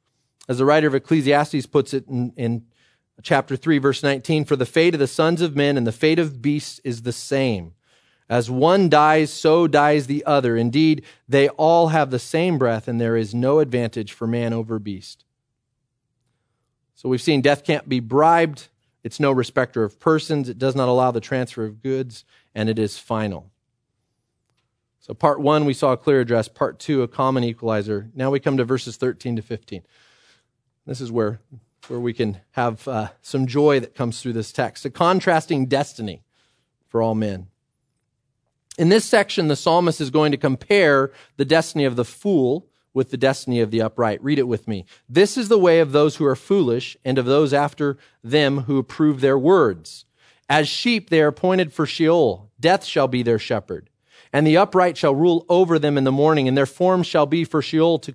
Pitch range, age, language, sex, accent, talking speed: 120-150 Hz, 30-49, English, male, American, 195 wpm